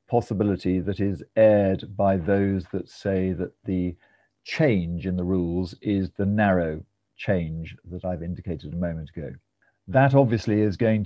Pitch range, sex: 90-110 Hz, male